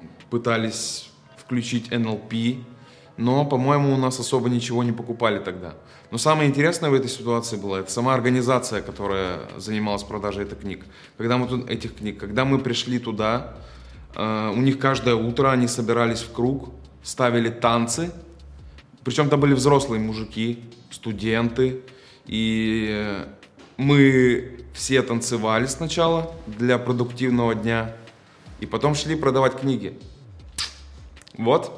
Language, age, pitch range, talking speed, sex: Russian, 20-39, 105-130 Hz, 115 wpm, male